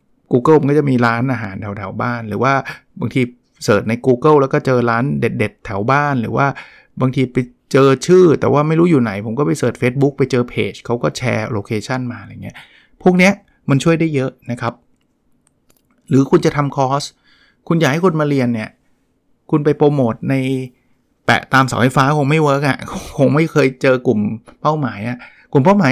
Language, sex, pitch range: Thai, male, 120-150 Hz